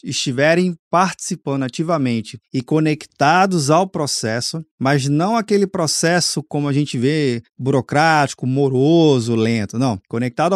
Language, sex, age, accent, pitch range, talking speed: Portuguese, male, 20-39, Brazilian, 145-185 Hz, 115 wpm